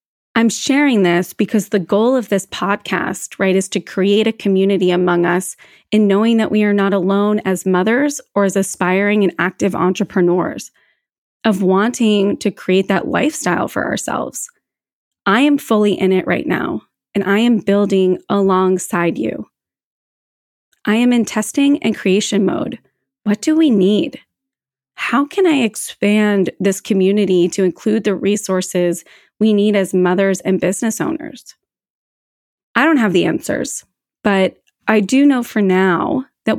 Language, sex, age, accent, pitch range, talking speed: English, female, 20-39, American, 185-220 Hz, 155 wpm